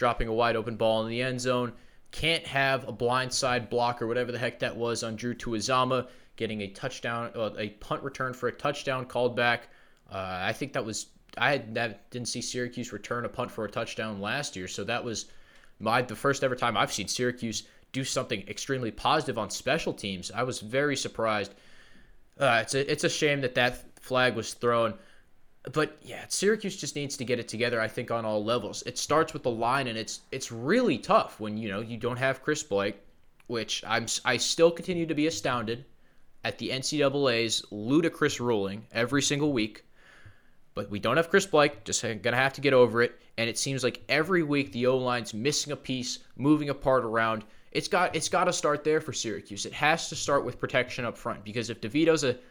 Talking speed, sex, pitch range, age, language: 210 wpm, male, 115-140 Hz, 20-39, English